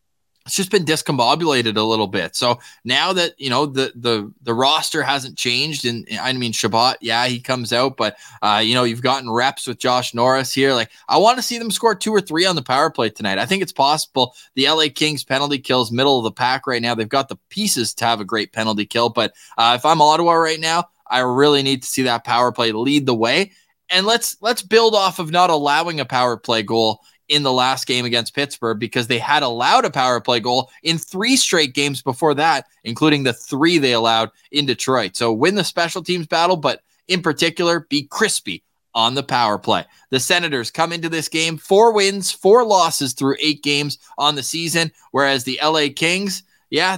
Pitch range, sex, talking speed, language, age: 125-170 Hz, male, 215 wpm, English, 20-39